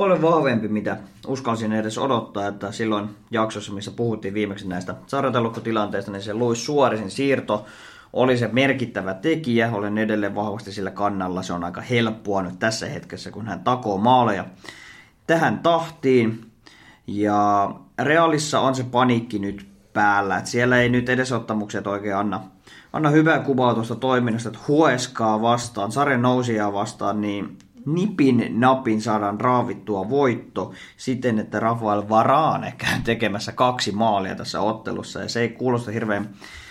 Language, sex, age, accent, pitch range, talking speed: Finnish, male, 20-39, native, 105-130 Hz, 140 wpm